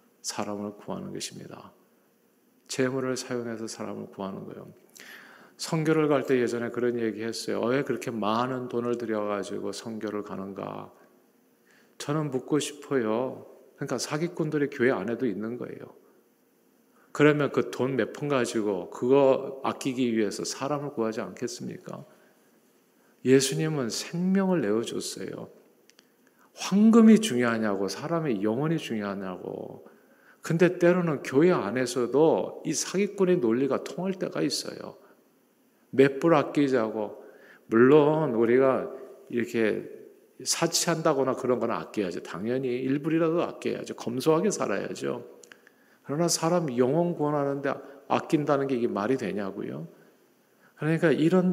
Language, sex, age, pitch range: Korean, male, 50-69, 120-165 Hz